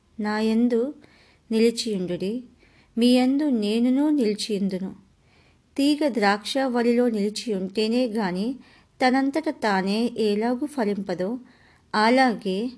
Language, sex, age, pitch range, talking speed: English, male, 50-69, 200-245 Hz, 105 wpm